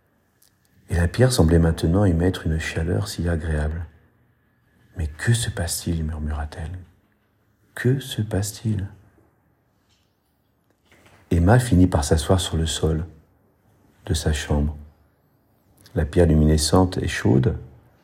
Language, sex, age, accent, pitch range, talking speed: French, male, 50-69, French, 85-110 Hz, 125 wpm